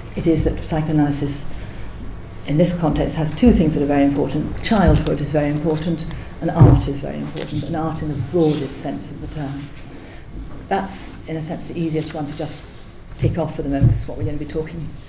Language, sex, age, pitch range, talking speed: English, female, 50-69, 140-160 Hz, 215 wpm